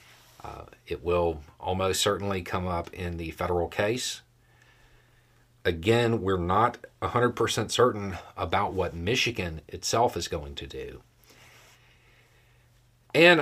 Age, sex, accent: 40-59, male, American